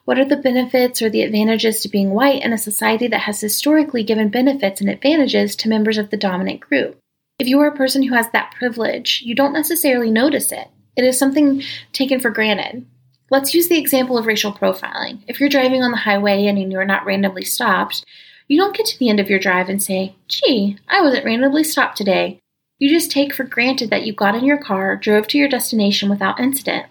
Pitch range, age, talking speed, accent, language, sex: 210-275 Hz, 30-49, 220 wpm, American, English, female